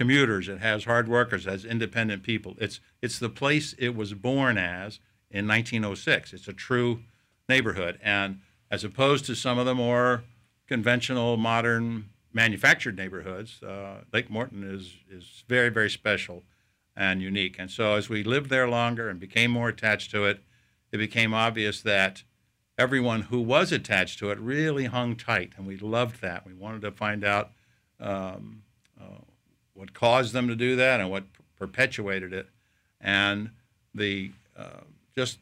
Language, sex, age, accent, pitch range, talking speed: English, male, 60-79, American, 100-120 Hz, 165 wpm